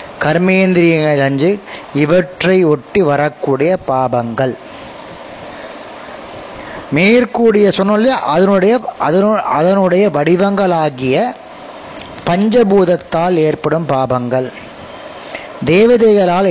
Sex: male